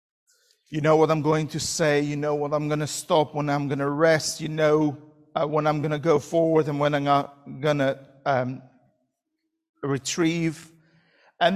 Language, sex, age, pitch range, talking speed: English, male, 50-69, 140-190 Hz, 180 wpm